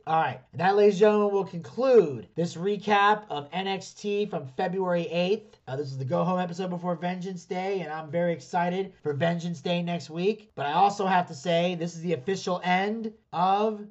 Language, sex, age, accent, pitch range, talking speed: English, male, 30-49, American, 145-180 Hz, 190 wpm